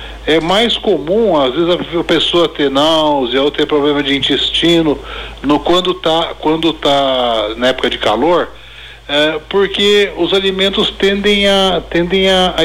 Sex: male